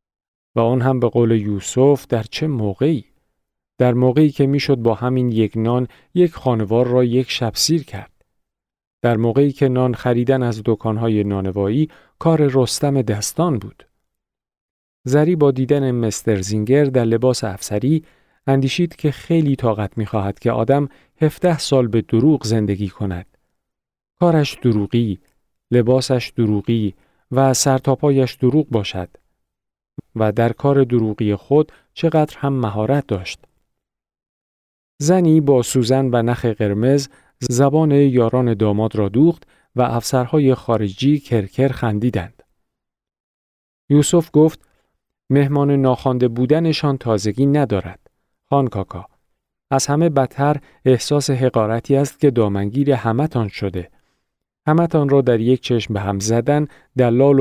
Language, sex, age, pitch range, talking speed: Persian, male, 40-59, 110-140 Hz, 125 wpm